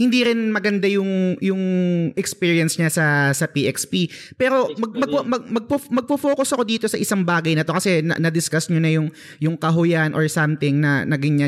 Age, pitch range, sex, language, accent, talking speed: 20-39, 160-215 Hz, male, Filipino, native, 185 wpm